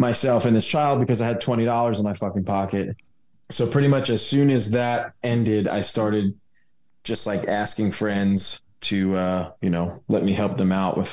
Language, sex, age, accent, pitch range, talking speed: English, male, 20-39, American, 100-115 Hz, 195 wpm